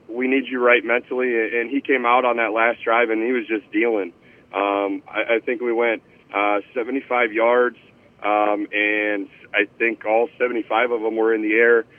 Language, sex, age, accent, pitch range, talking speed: English, male, 30-49, American, 115-135 Hz, 195 wpm